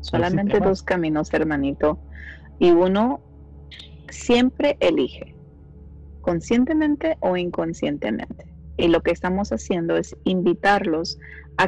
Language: Spanish